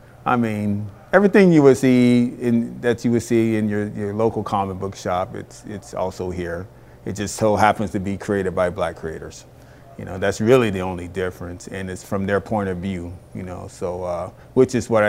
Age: 40-59